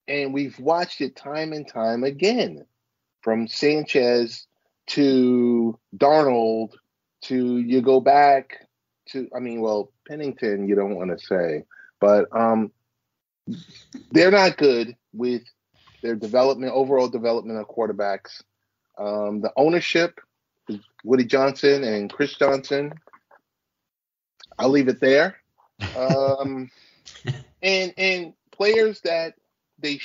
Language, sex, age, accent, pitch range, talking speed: English, male, 30-49, American, 115-145 Hz, 115 wpm